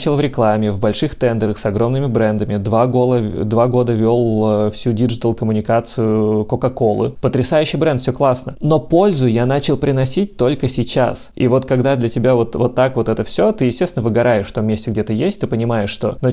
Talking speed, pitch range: 185 wpm, 105-125 Hz